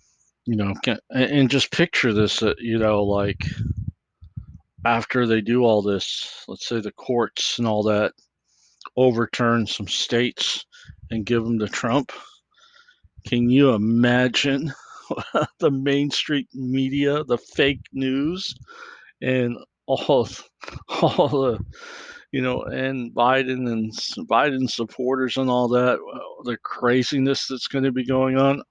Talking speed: 130 wpm